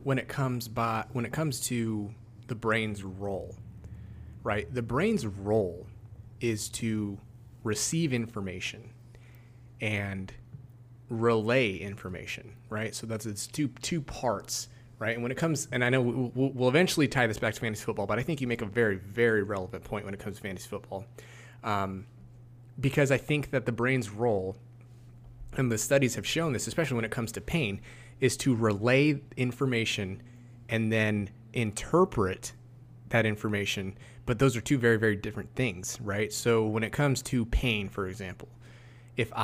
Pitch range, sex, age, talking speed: 110-125 Hz, male, 30-49, 165 wpm